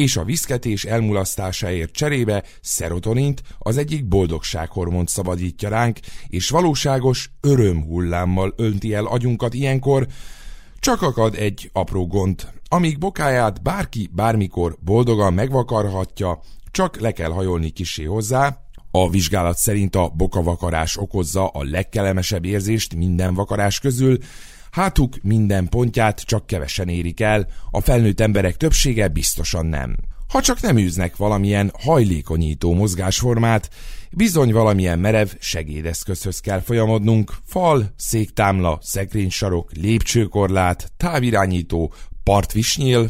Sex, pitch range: male, 90-120 Hz